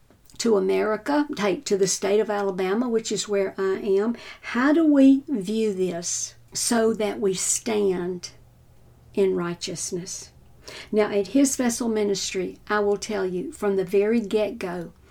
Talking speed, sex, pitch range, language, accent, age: 145 wpm, female, 190-230 Hz, English, American, 60-79